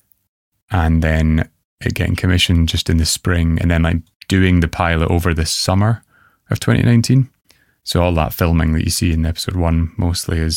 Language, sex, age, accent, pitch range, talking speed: English, male, 20-39, British, 80-90 Hz, 185 wpm